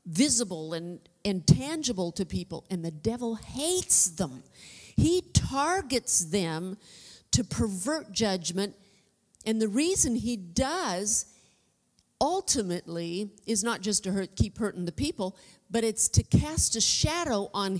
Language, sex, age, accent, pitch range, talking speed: English, female, 50-69, American, 170-210 Hz, 130 wpm